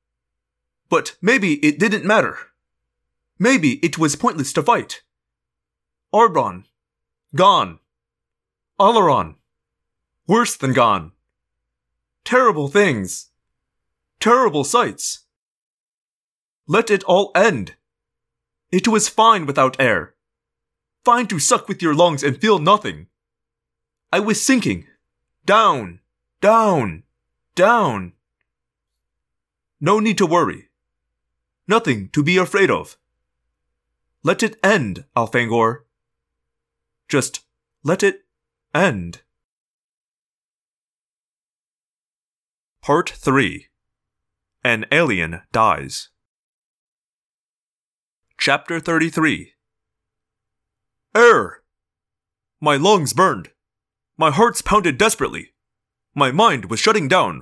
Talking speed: 85 wpm